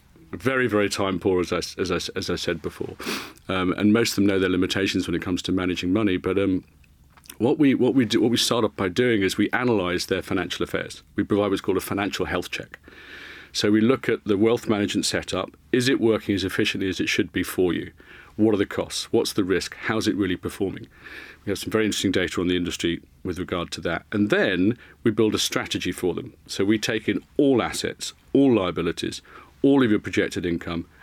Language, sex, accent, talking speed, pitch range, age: English, male, British, 225 wpm, 90-115 Hz, 40-59